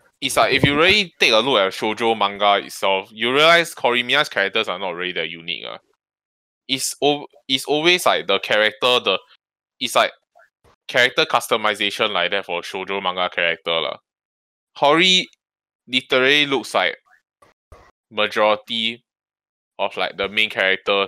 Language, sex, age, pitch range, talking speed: English, male, 10-29, 100-125 Hz, 145 wpm